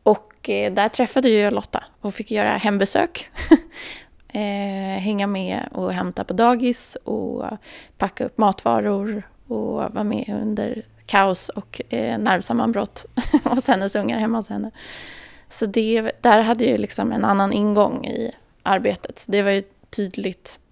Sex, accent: female, native